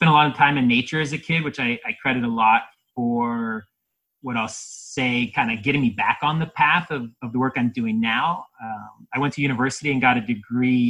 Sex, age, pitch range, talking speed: male, 30-49, 115-140 Hz, 240 wpm